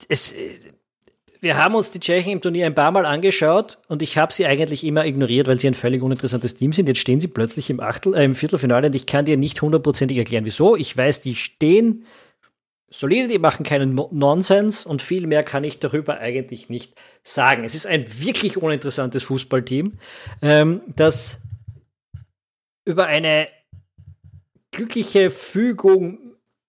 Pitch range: 135-180 Hz